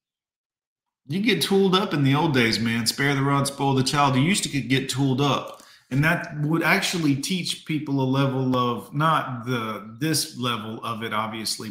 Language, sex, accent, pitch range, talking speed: English, male, American, 125-155 Hz, 190 wpm